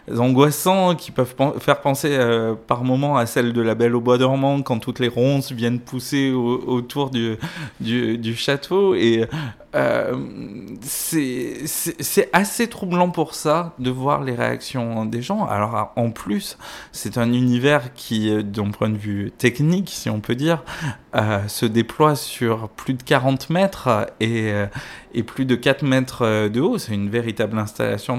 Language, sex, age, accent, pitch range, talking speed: French, male, 20-39, French, 115-140 Hz, 170 wpm